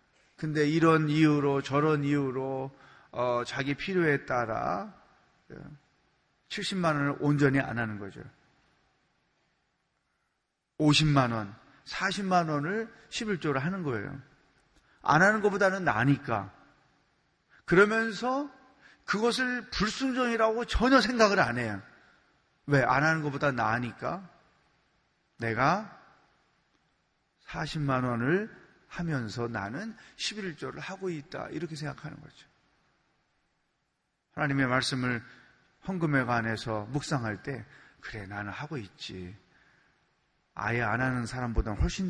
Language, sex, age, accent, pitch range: Korean, male, 30-49, native, 125-195 Hz